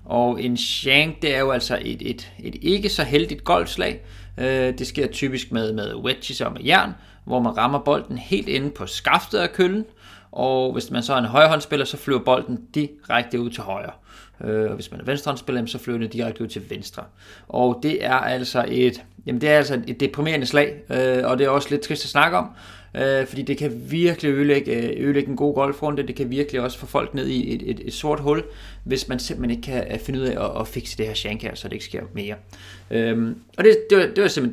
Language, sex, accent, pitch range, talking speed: Danish, male, native, 120-150 Hz, 235 wpm